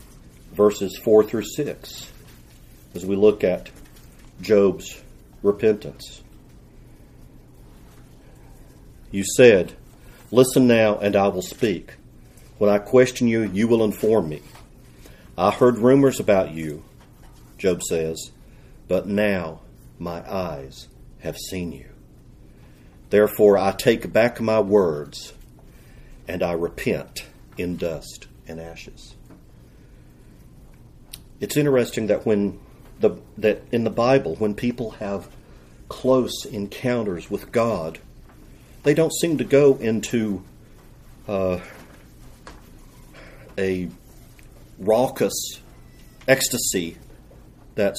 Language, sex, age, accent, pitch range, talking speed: English, male, 50-69, American, 90-115 Hz, 100 wpm